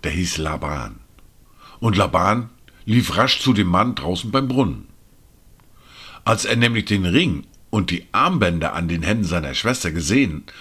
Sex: male